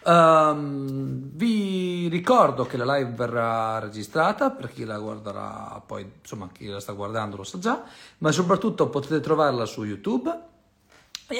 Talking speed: 140 wpm